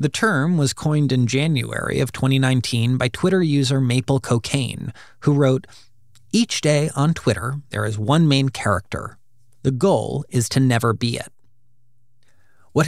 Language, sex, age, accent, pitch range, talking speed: English, male, 30-49, American, 115-150 Hz, 155 wpm